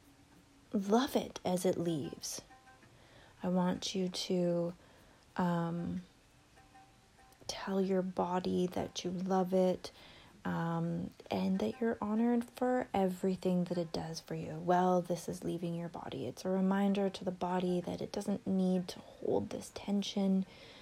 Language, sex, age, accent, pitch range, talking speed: English, female, 20-39, American, 170-200 Hz, 140 wpm